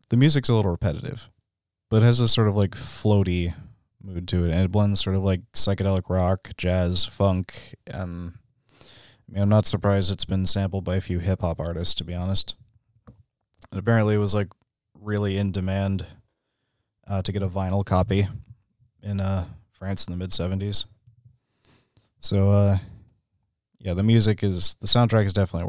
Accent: American